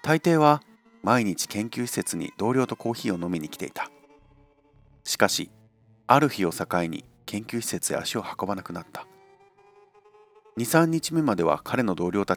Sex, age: male, 40-59